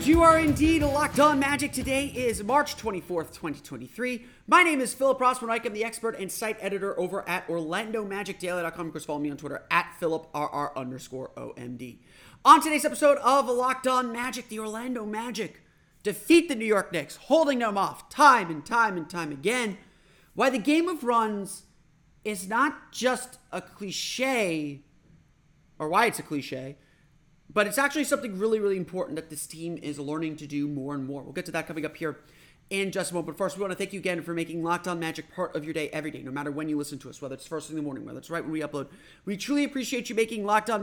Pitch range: 155-230 Hz